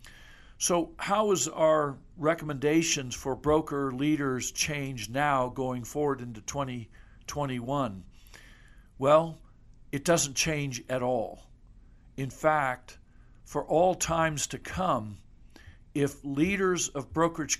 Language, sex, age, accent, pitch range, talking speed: English, male, 60-79, American, 125-155 Hz, 105 wpm